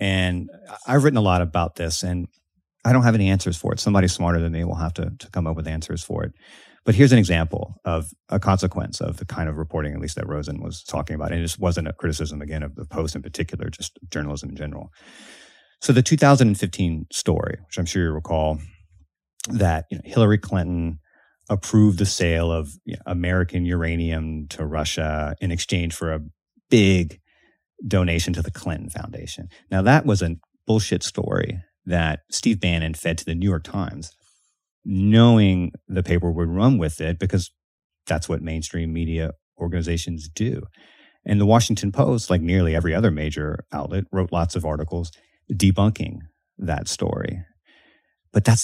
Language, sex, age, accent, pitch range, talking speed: English, male, 30-49, American, 80-100 Hz, 180 wpm